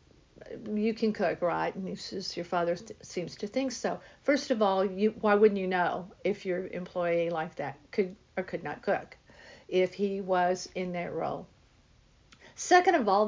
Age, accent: 50-69, American